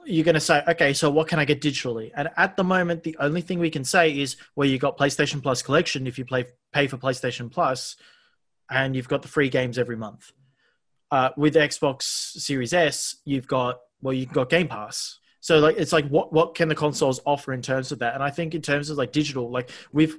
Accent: Australian